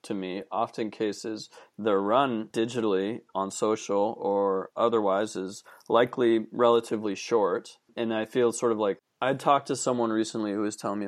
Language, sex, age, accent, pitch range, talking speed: English, male, 30-49, American, 100-120 Hz, 160 wpm